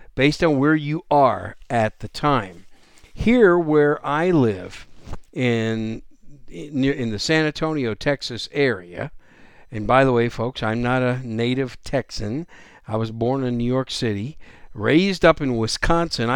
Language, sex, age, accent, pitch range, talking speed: English, male, 60-79, American, 110-150 Hz, 145 wpm